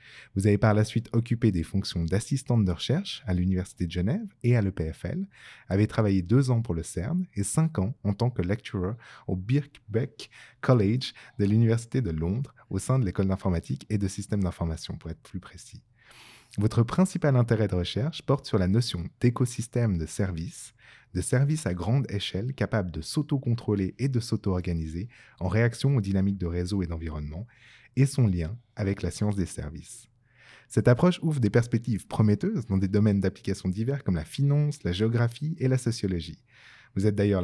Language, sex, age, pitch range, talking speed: French, male, 20-39, 95-130 Hz, 180 wpm